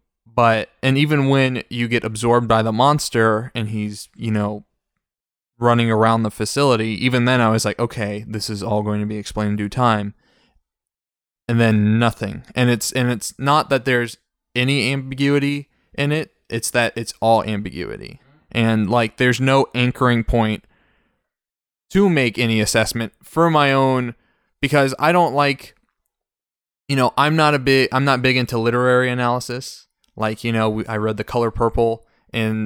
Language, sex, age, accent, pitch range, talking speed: English, male, 20-39, American, 110-130 Hz, 170 wpm